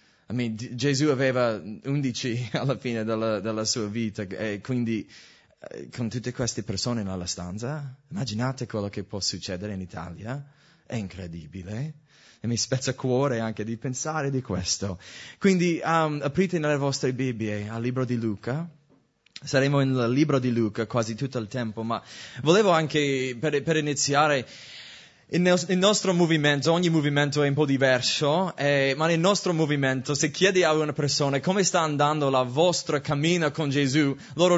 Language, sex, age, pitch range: English, male, 20-39, 115-155 Hz